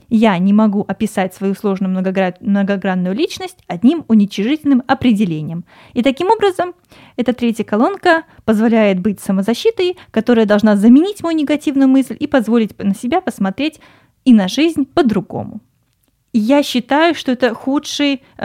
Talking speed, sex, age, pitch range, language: 130 wpm, female, 20-39, 195-255 Hz, Russian